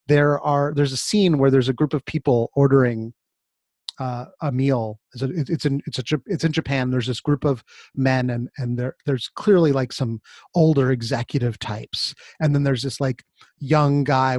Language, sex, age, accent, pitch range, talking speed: English, male, 30-49, American, 130-155 Hz, 190 wpm